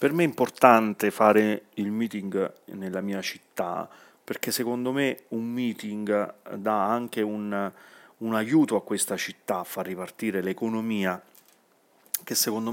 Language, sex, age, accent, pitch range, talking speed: Italian, male, 30-49, native, 100-115 Hz, 135 wpm